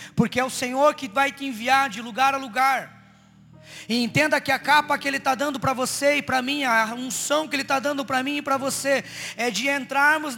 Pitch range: 280-350 Hz